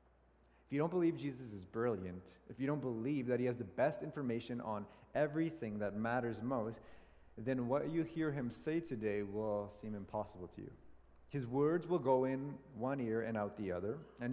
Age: 30-49